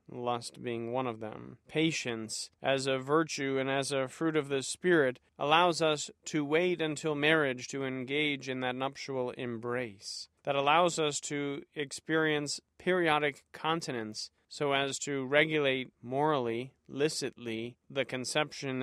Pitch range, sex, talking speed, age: 125-150 Hz, male, 135 wpm, 40-59